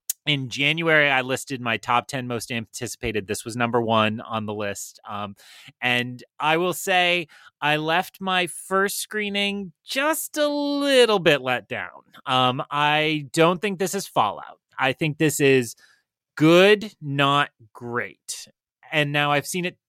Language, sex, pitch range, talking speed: English, male, 115-160 Hz, 155 wpm